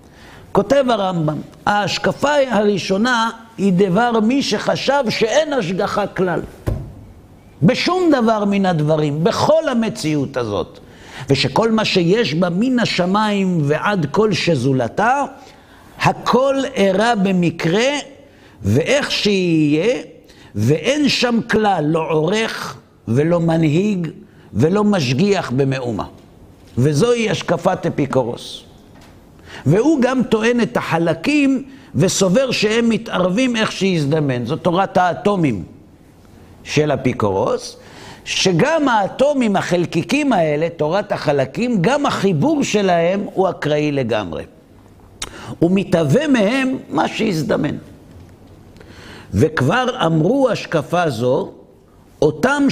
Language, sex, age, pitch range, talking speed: Hebrew, male, 60-79, 150-225 Hz, 95 wpm